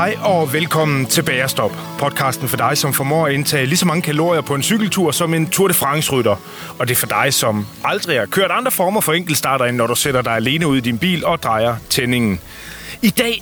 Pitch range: 125-165 Hz